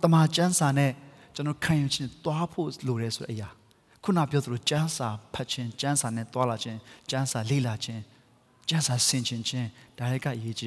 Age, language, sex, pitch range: 30-49, English, male, 145-205 Hz